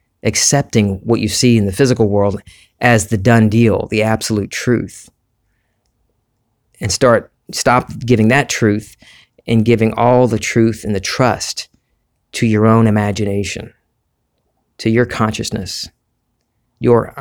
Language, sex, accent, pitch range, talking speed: English, male, American, 105-115 Hz, 130 wpm